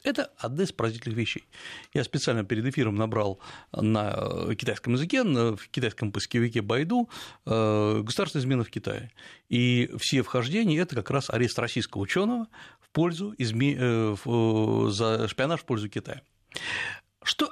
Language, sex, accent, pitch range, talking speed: Russian, male, native, 115-175 Hz, 125 wpm